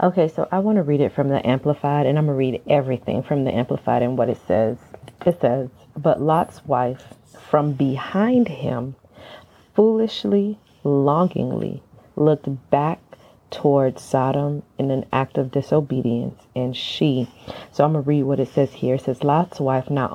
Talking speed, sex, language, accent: 165 wpm, female, English, American